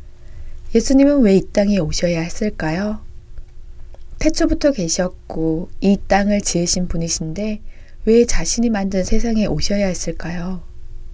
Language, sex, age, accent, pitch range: Korean, female, 20-39, native, 170-220 Hz